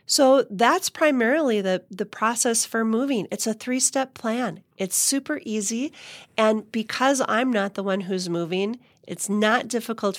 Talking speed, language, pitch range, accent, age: 155 wpm, English, 175-225 Hz, American, 40-59